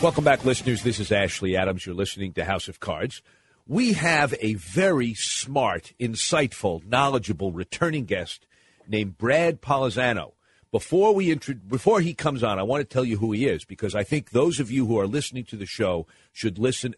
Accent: American